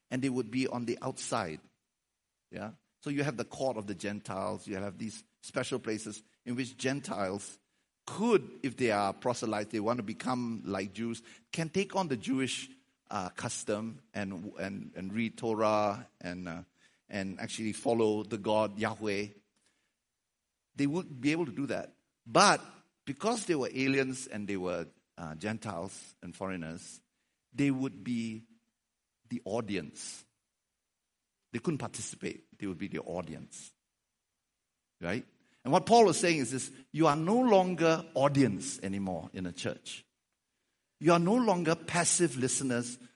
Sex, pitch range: male, 105-140 Hz